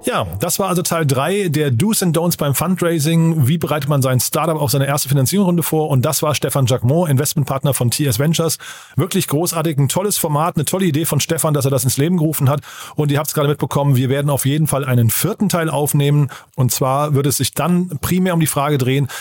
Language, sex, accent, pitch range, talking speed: German, male, German, 135-165 Hz, 230 wpm